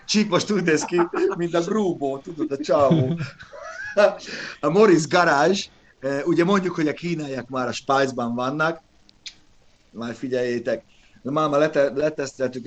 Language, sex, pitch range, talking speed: Hungarian, male, 115-155 Hz, 125 wpm